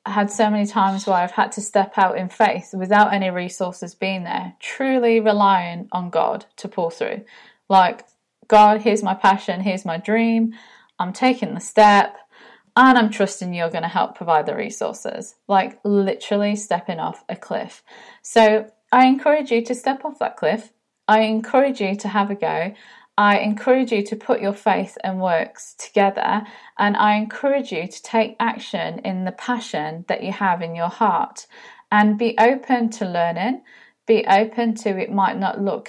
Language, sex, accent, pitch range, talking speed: English, female, British, 190-230 Hz, 175 wpm